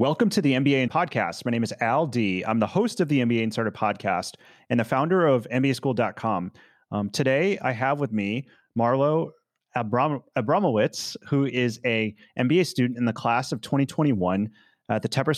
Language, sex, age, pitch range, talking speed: English, male, 30-49, 105-130 Hz, 175 wpm